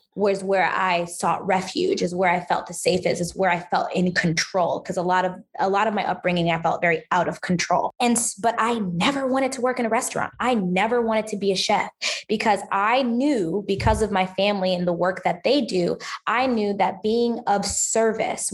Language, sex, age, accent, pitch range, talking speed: English, female, 20-39, American, 175-215 Hz, 220 wpm